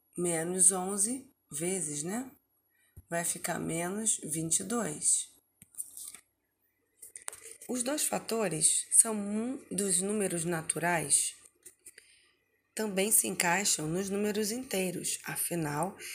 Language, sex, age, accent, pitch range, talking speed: Portuguese, female, 20-39, Brazilian, 165-220 Hz, 85 wpm